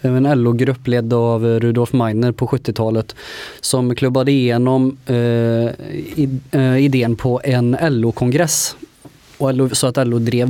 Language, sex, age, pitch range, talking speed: Swedish, male, 20-39, 115-135 Hz, 125 wpm